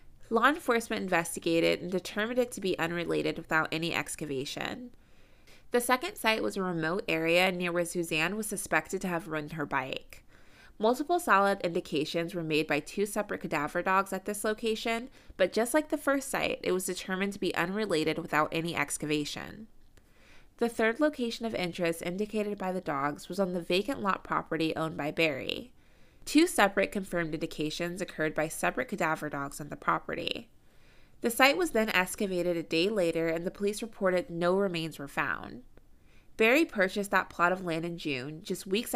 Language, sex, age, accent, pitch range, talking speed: English, female, 20-39, American, 165-215 Hz, 175 wpm